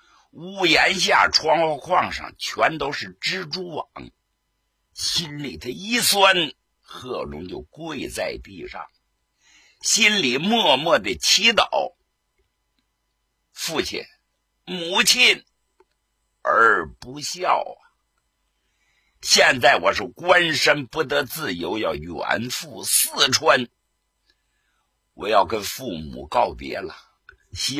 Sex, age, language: male, 60-79, Chinese